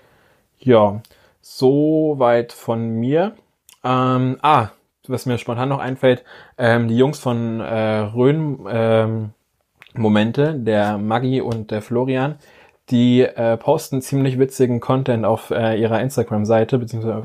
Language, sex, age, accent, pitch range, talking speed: German, male, 20-39, German, 110-130 Hz, 125 wpm